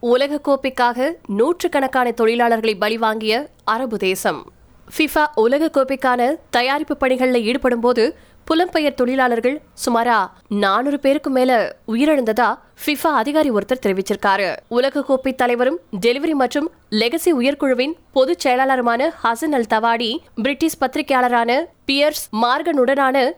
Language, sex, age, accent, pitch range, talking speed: Tamil, female, 20-39, native, 230-285 Hz, 110 wpm